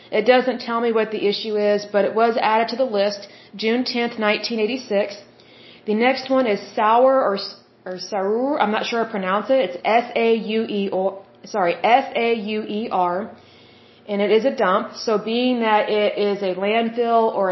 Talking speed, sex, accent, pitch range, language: 200 wpm, female, American, 205-235 Hz, German